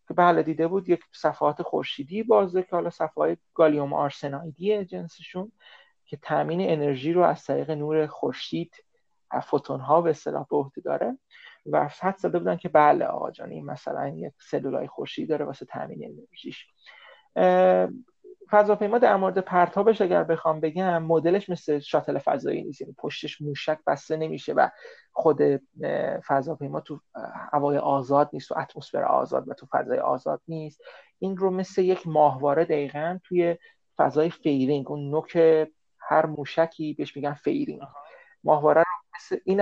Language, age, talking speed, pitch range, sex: Persian, 30-49, 140 wpm, 150-190 Hz, male